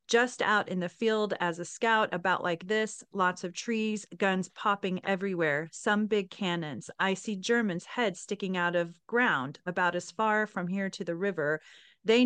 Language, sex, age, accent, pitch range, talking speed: English, female, 30-49, American, 170-215 Hz, 180 wpm